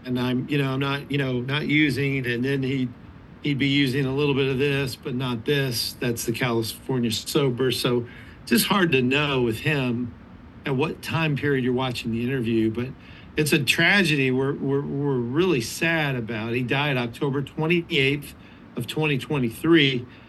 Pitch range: 120-150 Hz